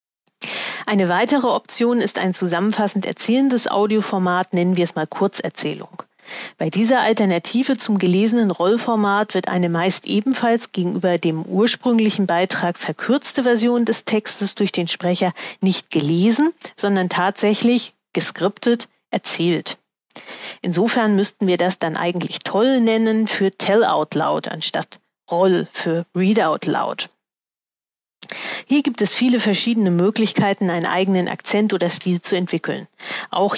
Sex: female